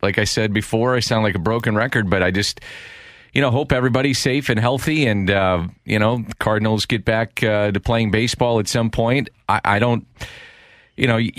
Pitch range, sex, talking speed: 95-115 Hz, male, 215 wpm